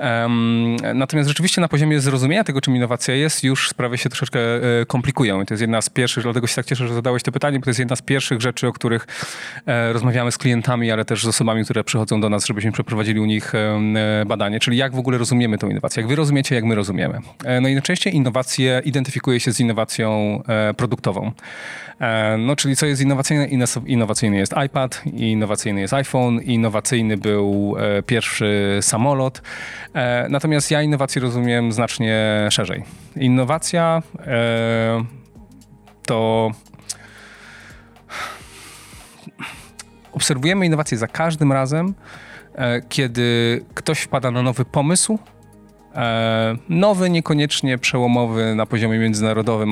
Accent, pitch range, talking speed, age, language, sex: native, 110-135 Hz, 140 wpm, 30-49, Polish, male